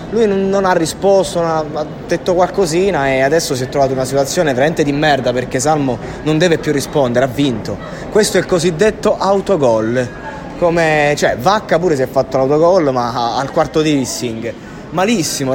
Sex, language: male, Italian